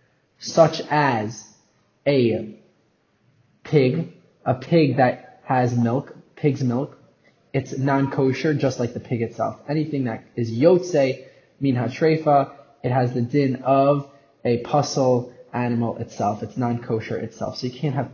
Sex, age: male, 20-39